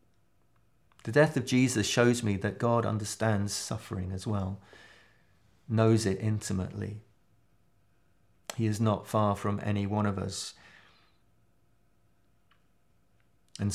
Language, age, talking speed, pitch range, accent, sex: English, 40-59, 110 wpm, 100-115 Hz, British, male